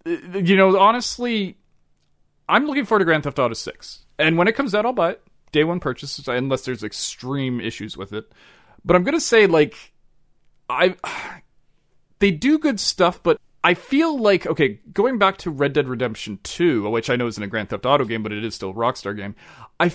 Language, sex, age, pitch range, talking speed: English, male, 30-49, 125-190 Hz, 205 wpm